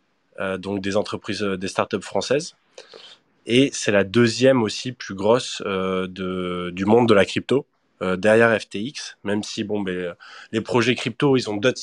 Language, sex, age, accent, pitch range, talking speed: French, male, 20-39, French, 105-125 Hz, 185 wpm